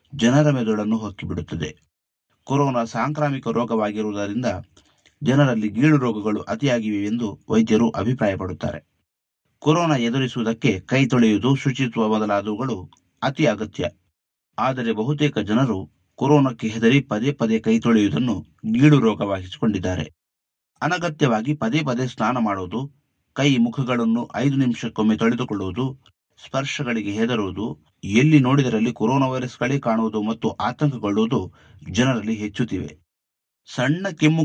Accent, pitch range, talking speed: native, 105-135 Hz, 95 wpm